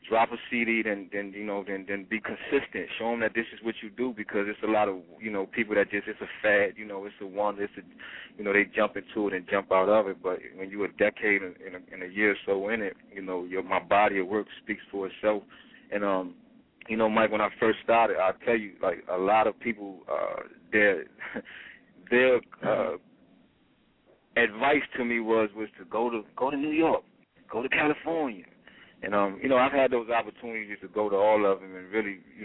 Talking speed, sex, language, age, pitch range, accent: 235 wpm, male, English, 30-49, 100-110 Hz, American